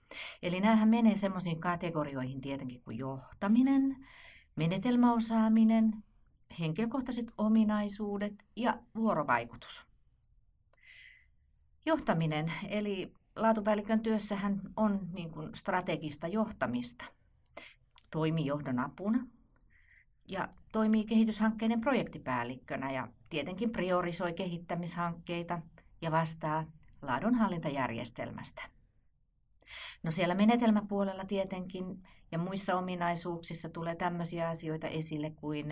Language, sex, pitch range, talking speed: Finnish, female, 150-210 Hz, 80 wpm